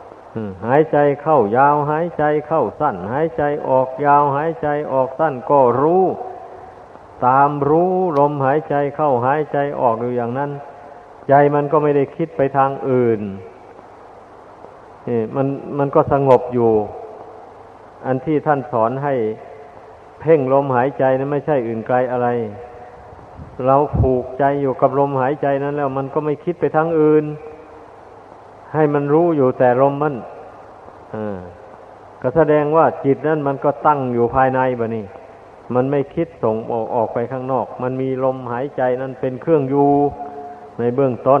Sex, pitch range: male, 125-150 Hz